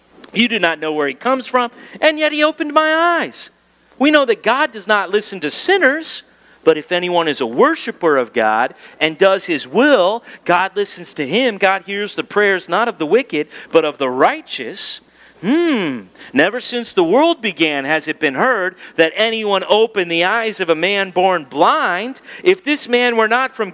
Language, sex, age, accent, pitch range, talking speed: English, male, 40-59, American, 165-240 Hz, 195 wpm